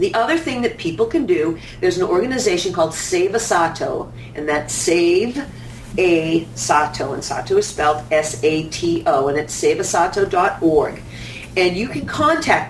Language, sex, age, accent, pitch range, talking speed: English, female, 50-69, American, 165-245 Hz, 145 wpm